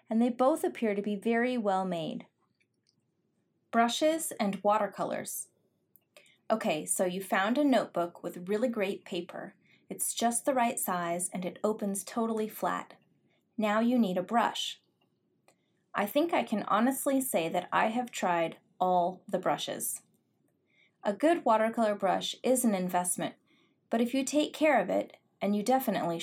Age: 20-39